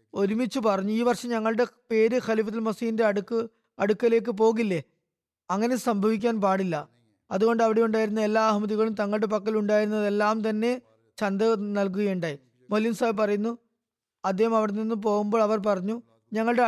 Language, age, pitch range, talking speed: Malayalam, 20-39, 185-225 Hz, 120 wpm